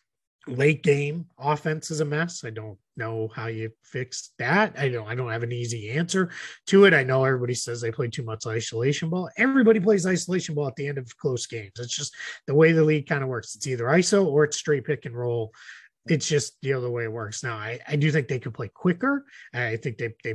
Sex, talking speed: male, 240 wpm